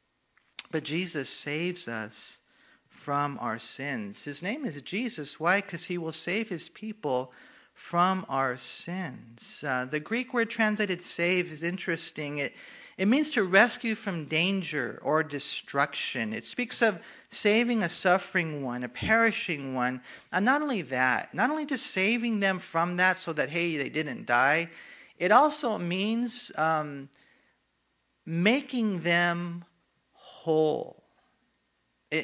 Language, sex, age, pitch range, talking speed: English, male, 40-59, 140-215 Hz, 135 wpm